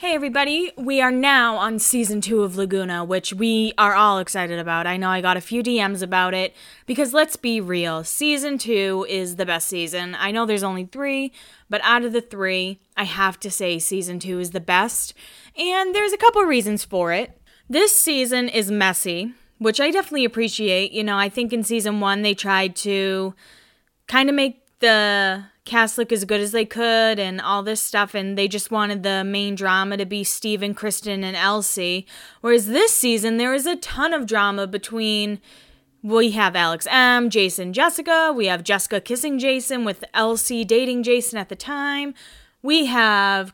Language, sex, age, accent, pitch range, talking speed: English, female, 20-39, American, 195-255 Hz, 190 wpm